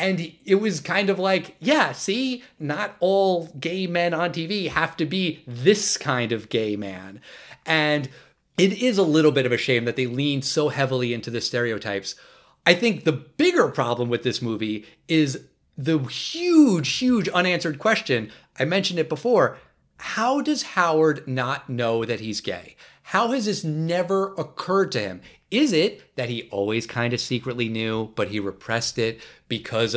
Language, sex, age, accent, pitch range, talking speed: English, male, 30-49, American, 120-195 Hz, 170 wpm